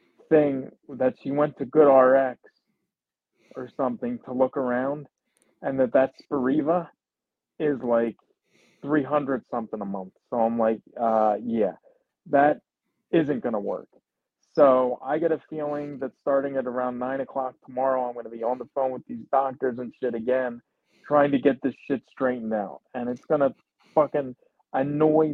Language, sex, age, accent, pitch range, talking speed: English, male, 30-49, American, 130-170 Hz, 160 wpm